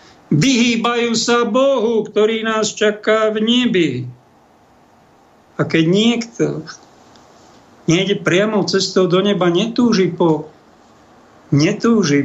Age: 50-69